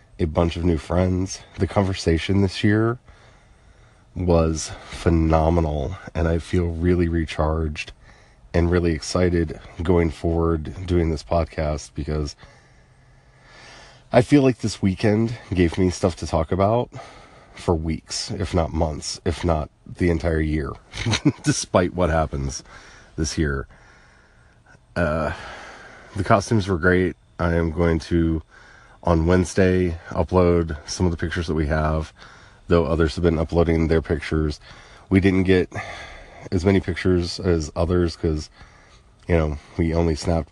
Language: English